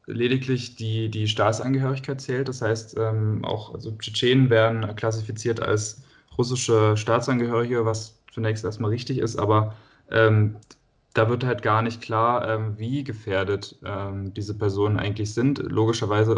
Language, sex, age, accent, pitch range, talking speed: German, male, 20-39, German, 110-120 Hz, 135 wpm